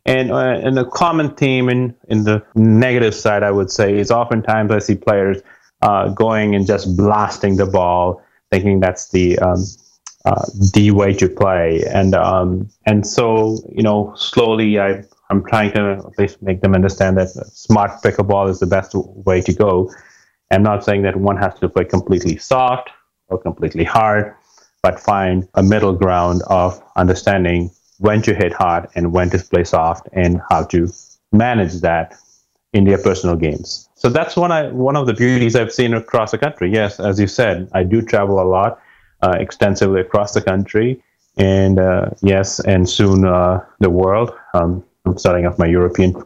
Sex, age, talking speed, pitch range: male, 30-49, 185 wpm, 90-105 Hz